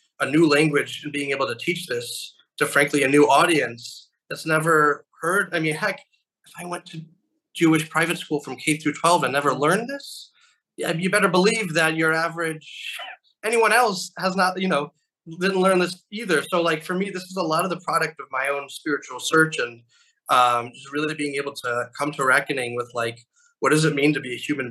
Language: English